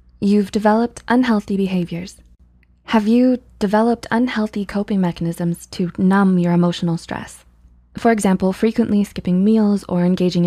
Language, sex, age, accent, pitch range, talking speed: English, female, 20-39, American, 170-215 Hz, 125 wpm